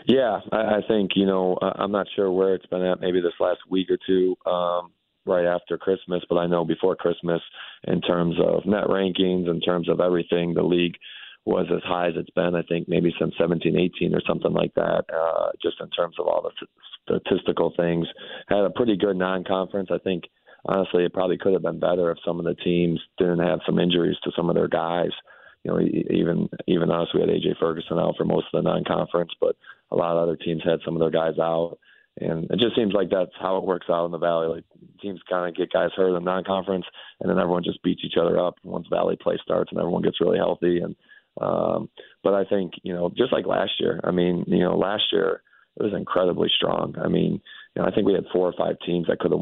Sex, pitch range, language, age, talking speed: male, 85-95 Hz, English, 30-49, 235 wpm